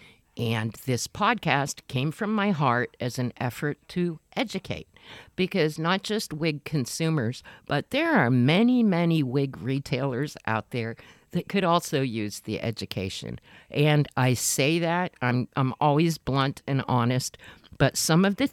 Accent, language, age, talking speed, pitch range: American, English, 50-69, 150 wpm, 125-160 Hz